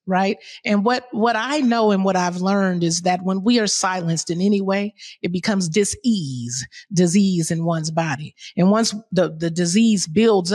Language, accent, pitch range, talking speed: English, American, 180-225 Hz, 180 wpm